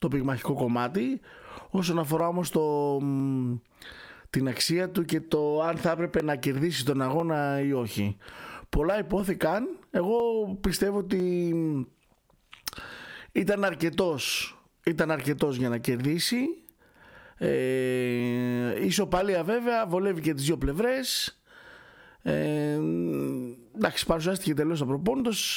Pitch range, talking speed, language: 135-200 Hz, 115 wpm, Greek